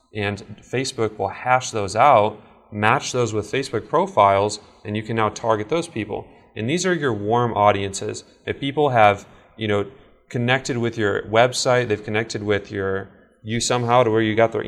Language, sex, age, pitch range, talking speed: English, male, 20-39, 105-125 Hz, 180 wpm